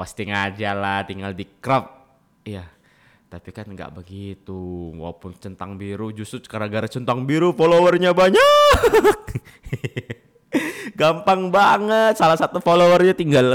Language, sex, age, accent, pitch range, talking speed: Indonesian, male, 20-39, native, 100-135 Hz, 120 wpm